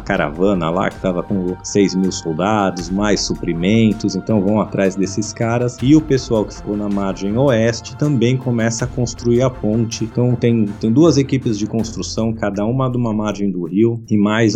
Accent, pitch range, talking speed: Brazilian, 95-110 Hz, 185 wpm